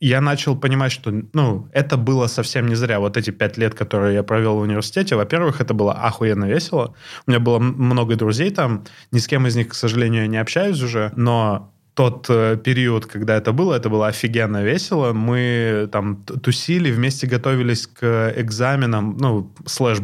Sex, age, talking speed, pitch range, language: male, 20-39, 180 wpm, 105-130 Hz, Russian